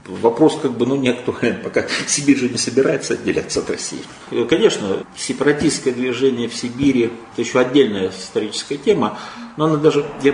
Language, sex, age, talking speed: Russian, male, 40-59, 165 wpm